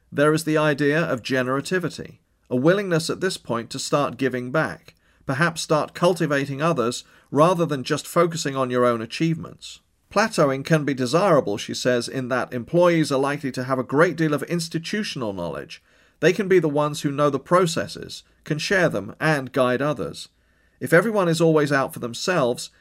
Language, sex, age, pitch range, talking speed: English, male, 40-59, 130-165 Hz, 180 wpm